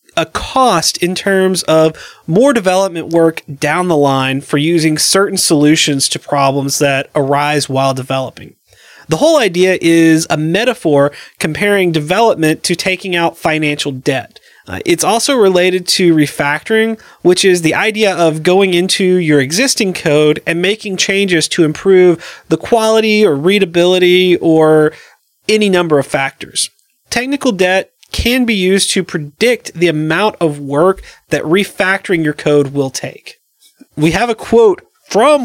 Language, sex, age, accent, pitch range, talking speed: English, male, 30-49, American, 155-200 Hz, 145 wpm